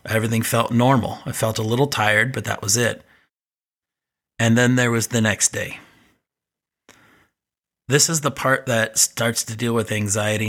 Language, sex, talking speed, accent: English, male, 165 wpm, American